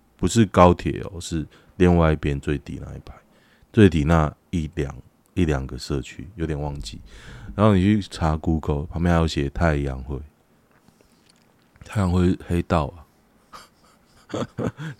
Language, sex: Chinese, male